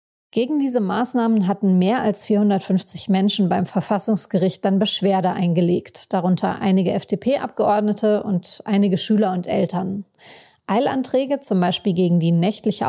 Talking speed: 125 wpm